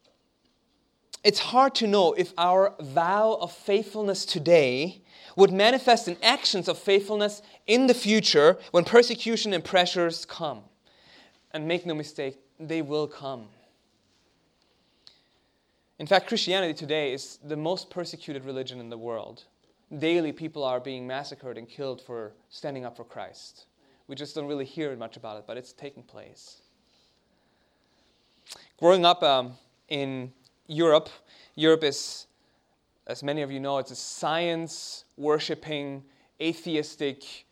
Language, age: English, 30-49